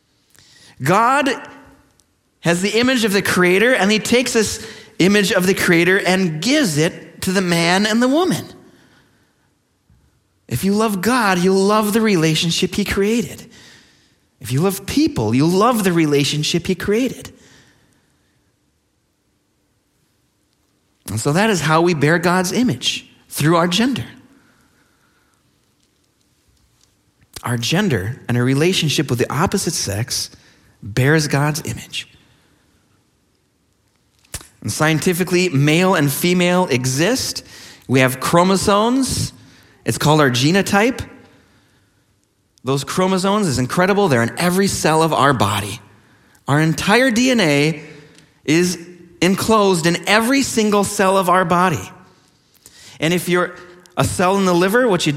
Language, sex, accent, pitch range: English, male, American, 140-200 Hz